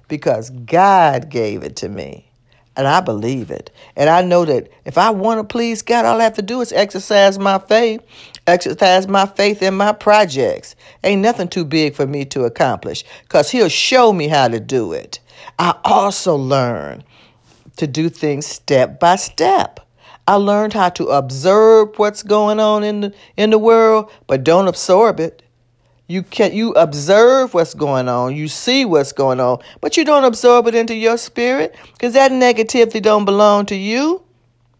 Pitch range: 140-220 Hz